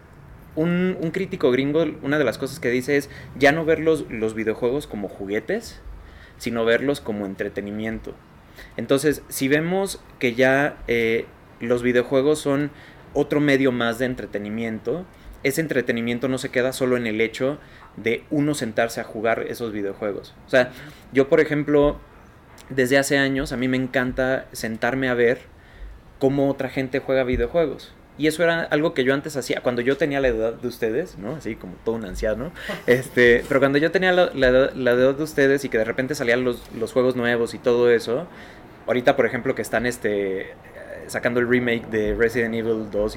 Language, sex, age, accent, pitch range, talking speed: Spanish, male, 20-39, Mexican, 115-140 Hz, 180 wpm